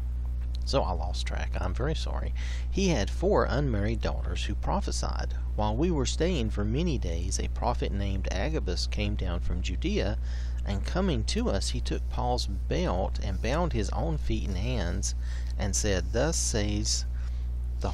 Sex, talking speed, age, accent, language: male, 165 wpm, 40-59, American, English